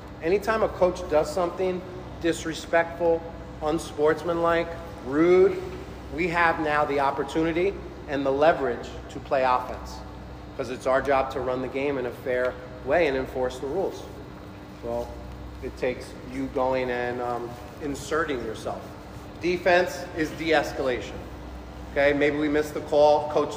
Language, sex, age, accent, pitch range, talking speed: English, male, 30-49, American, 125-170 Hz, 135 wpm